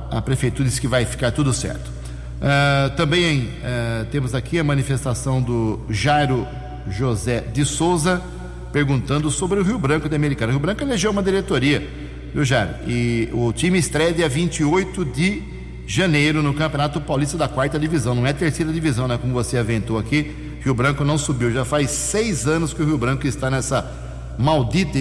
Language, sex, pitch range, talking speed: Portuguese, male, 120-160 Hz, 175 wpm